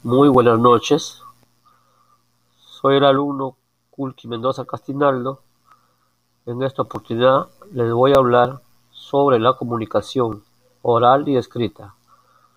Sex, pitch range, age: male, 115-150 Hz, 50-69